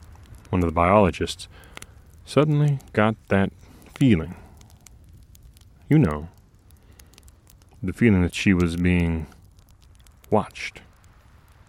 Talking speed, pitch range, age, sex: 85 wpm, 85-105 Hz, 30-49, male